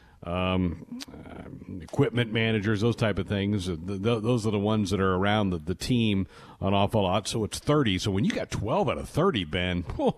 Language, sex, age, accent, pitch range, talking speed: English, male, 50-69, American, 95-125 Hz, 200 wpm